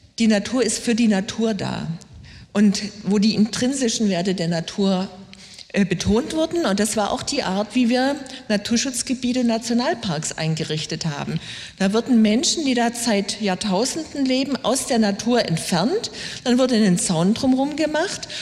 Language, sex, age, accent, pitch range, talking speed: German, female, 50-69, German, 190-240 Hz, 155 wpm